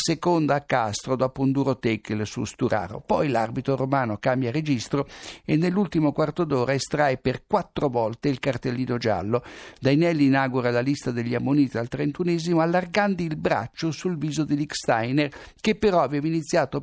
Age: 60-79